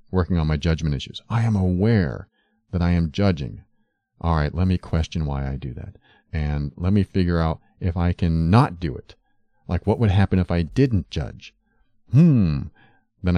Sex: male